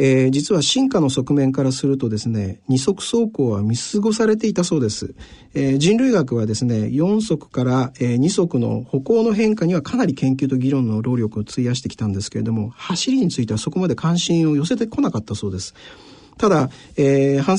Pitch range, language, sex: 120-185 Hz, Japanese, male